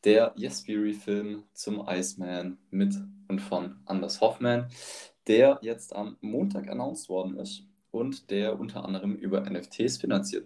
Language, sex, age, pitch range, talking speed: German, male, 20-39, 95-115 Hz, 130 wpm